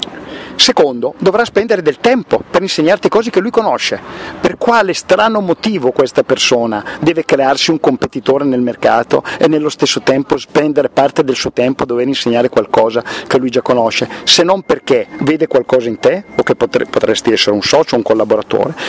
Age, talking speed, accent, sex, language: 50-69, 175 wpm, native, male, Italian